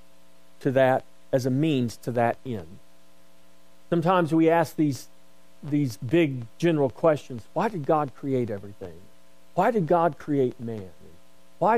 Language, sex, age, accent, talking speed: English, male, 40-59, American, 140 wpm